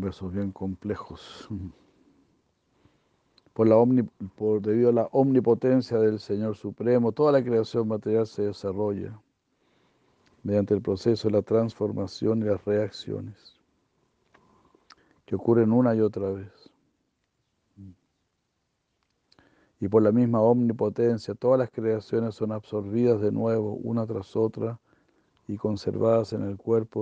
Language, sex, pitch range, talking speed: Spanish, male, 100-115 Hz, 120 wpm